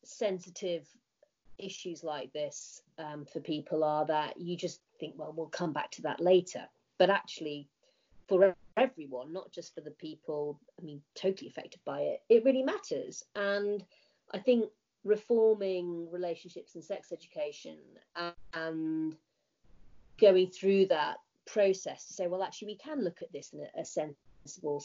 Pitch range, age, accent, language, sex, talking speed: 160-195 Hz, 30-49, British, English, female, 150 wpm